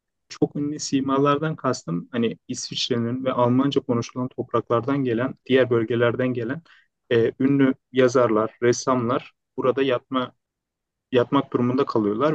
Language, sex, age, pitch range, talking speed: Turkish, male, 30-49, 125-150 Hz, 110 wpm